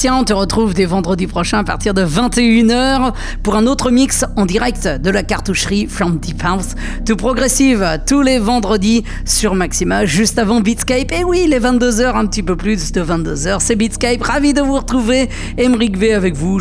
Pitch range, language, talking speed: 195-255 Hz, English, 190 wpm